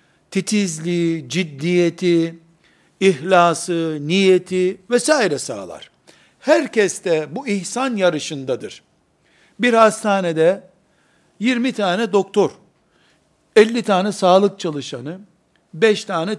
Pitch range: 165-200 Hz